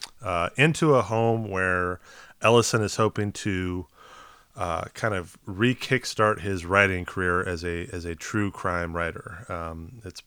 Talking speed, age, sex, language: 145 wpm, 30-49, male, English